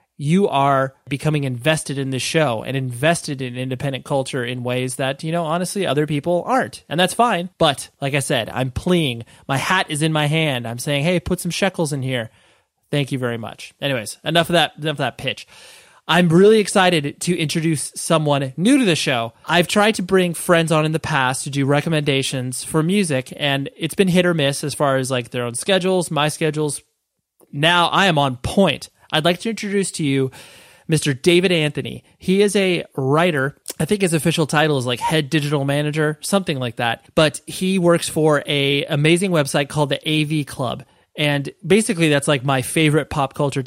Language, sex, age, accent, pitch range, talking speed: English, male, 30-49, American, 135-170 Hz, 195 wpm